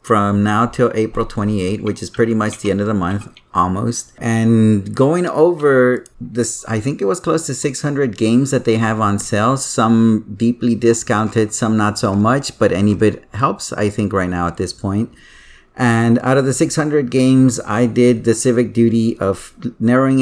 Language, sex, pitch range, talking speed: English, male, 105-125 Hz, 185 wpm